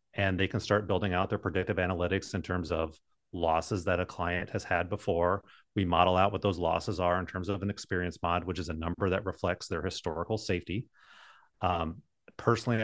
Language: English